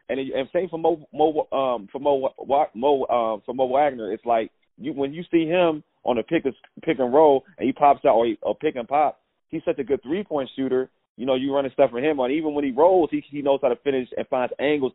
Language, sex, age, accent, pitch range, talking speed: English, male, 30-49, American, 125-160 Hz, 255 wpm